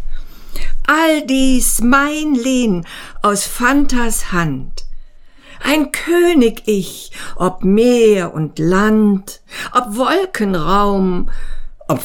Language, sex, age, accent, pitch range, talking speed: German, female, 60-79, German, 165-250 Hz, 85 wpm